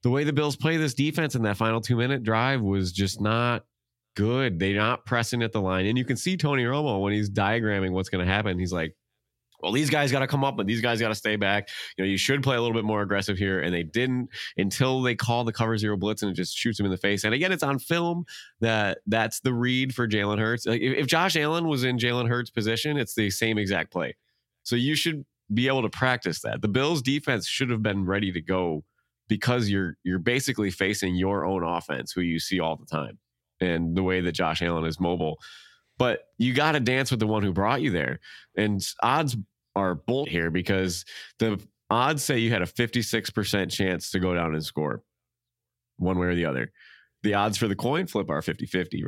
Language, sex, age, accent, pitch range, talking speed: English, male, 20-39, American, 95-125 Hz, 230 wpm